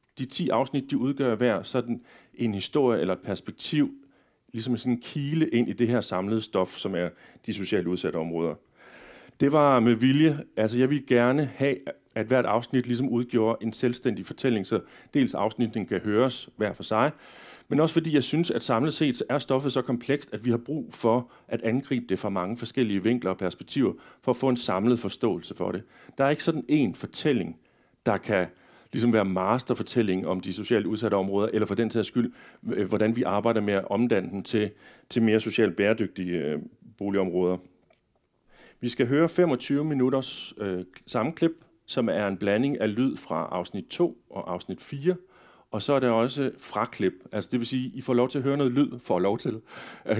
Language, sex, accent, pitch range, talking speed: Danish, male, native, 105-135 Hz, 195 wpm